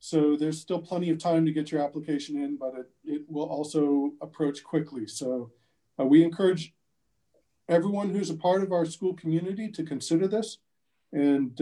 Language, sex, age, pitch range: English, male, 40-59, 140-165 Hz